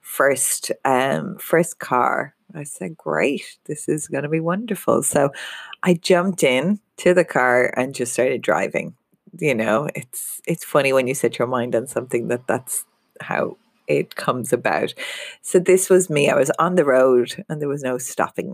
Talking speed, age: 180 wpm, 30-49